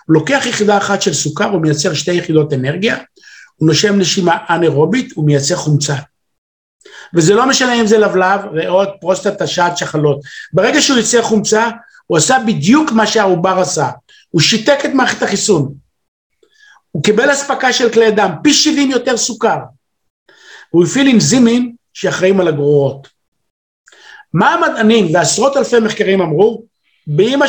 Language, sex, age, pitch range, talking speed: Hebrew, male, 50-69, 170-235 Hz, 140 wpm